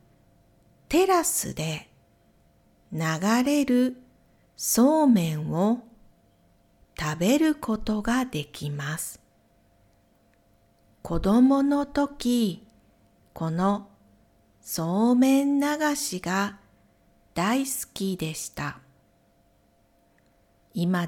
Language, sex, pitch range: Japanese, female, 160-265 Hz